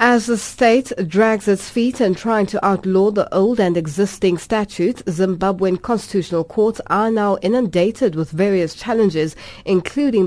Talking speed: 145 wpm